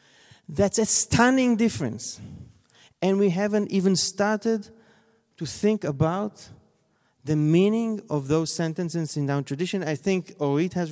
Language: English